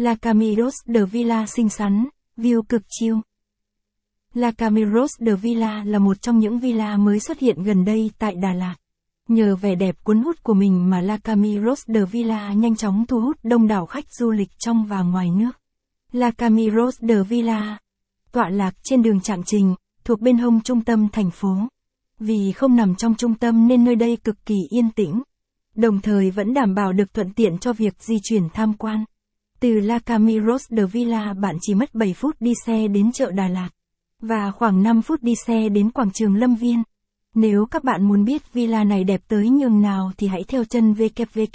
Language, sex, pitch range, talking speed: Vietnamese, female, 205-235 Hz, 200 wpm